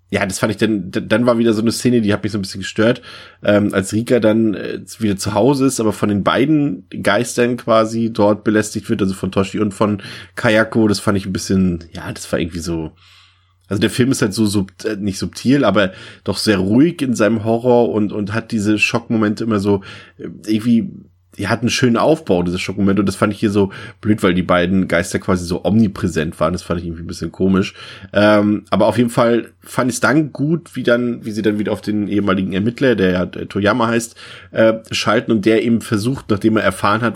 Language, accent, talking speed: German, German, 225 wpm